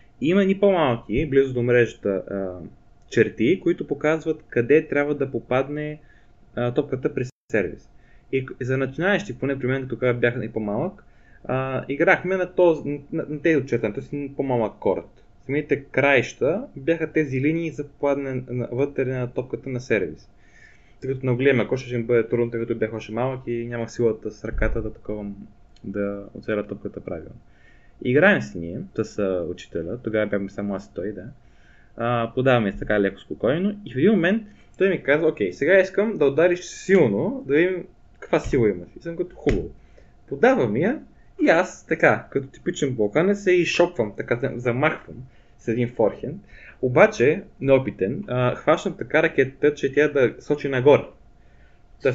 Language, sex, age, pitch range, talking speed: Bulgarian, male, 20-39, 115-155 Hz, 160 wpm